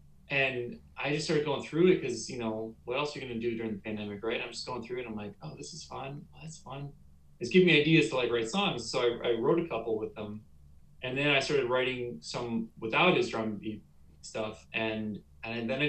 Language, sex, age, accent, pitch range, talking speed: English, male, 20-39, American, 95-130 Hz, 255 wpm